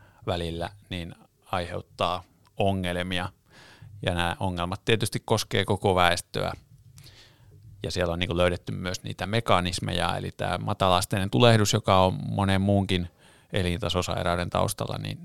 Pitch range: 90-115 Hz